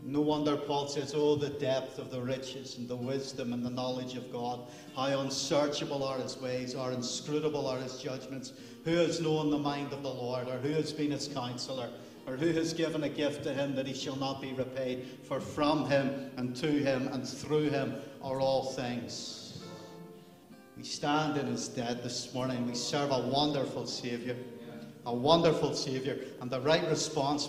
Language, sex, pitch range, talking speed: English, male, 120-140 Hz, 190 wpm